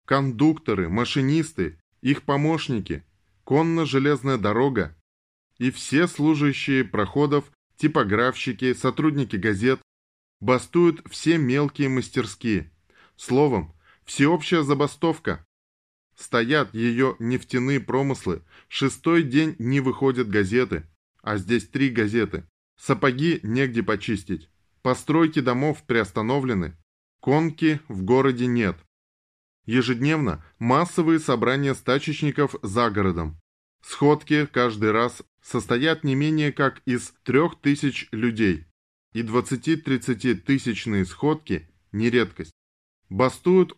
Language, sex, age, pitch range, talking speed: Russian, male, 20-39, 100-140 Hz, 95 wpm